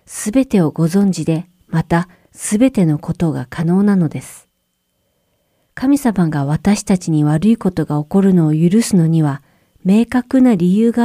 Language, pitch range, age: Japanese, 165-215 Hz, 40-59